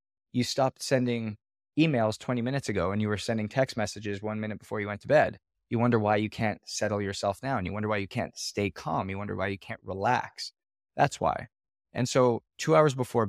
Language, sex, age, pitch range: English, male, 20-39, 100-120 Hz